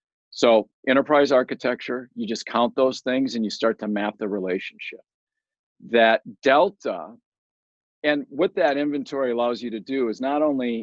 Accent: American